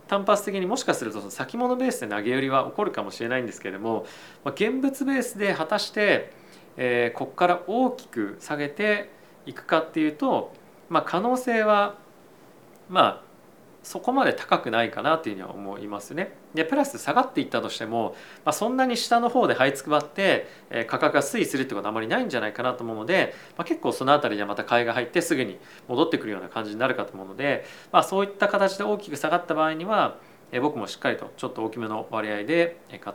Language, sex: Japanese, male